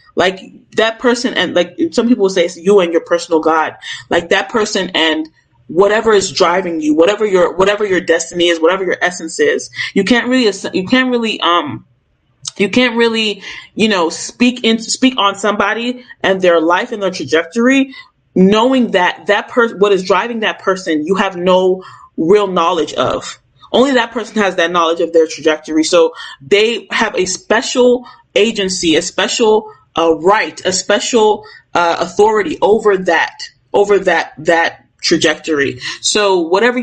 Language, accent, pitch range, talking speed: English, American, 170-225 Hz, 165 wpm